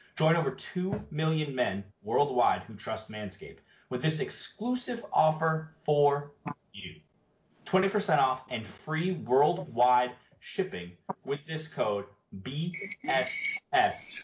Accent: American